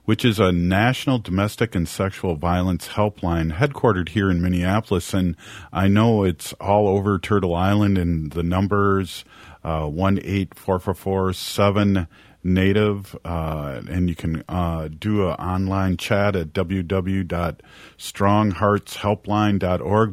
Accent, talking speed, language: American, 105 wpm, English